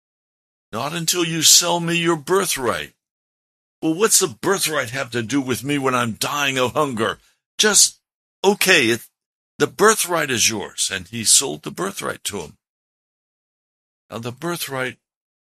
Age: 60-79